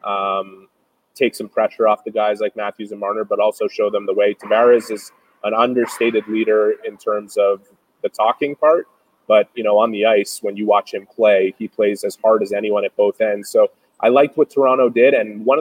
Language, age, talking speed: English, 20-39, 215 wpm